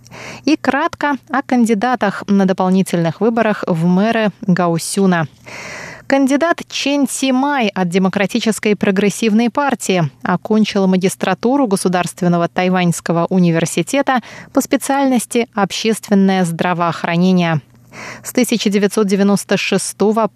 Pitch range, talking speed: 180-235 Hz, 85 wpm